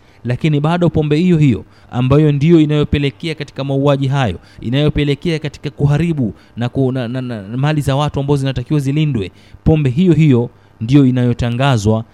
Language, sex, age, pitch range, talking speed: Swahili, male, 30-49, 115-150 Hz, 150 wpm